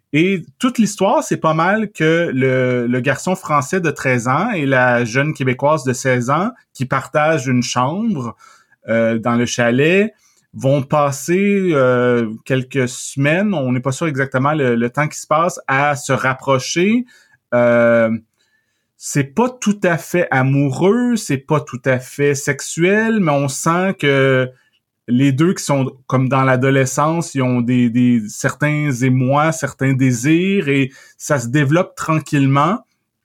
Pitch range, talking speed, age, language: 130-170 Hz, 155 wpm, 30-49, French